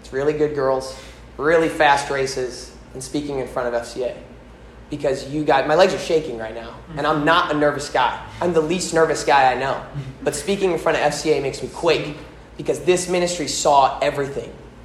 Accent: American